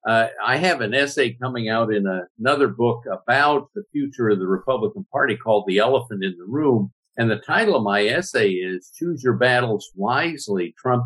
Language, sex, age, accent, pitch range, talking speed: English, male, 60-79, American, 115-150 Hz, 190 wpm